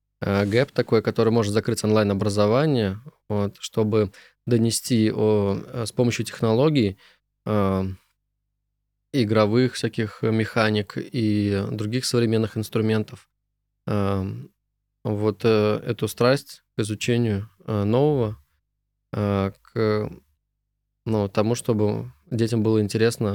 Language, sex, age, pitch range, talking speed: Russian, male, 20-39, 105-120 Hz, 100 wpm